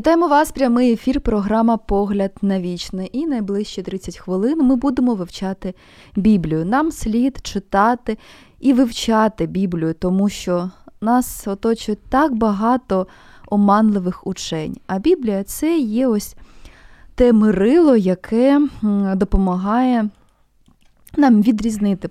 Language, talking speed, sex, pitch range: Ukrainian, 115 wpm, female, 195-255 Hz